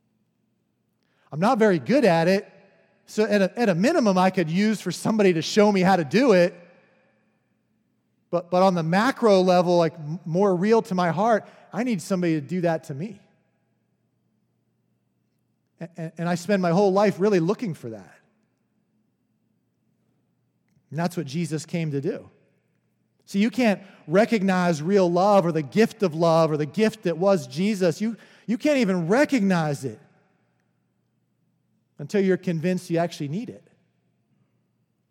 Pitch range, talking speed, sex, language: 150-200 Hz, 155 wpm, male, English